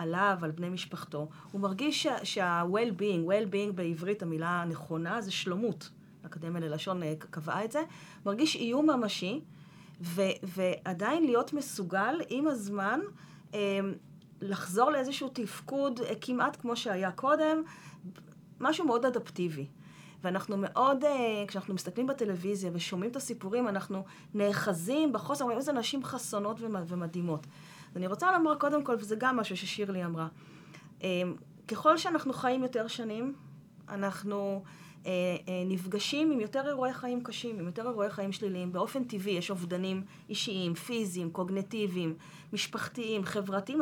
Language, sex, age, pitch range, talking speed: English, female, 30-49, 175-245 Hz, 130 wpm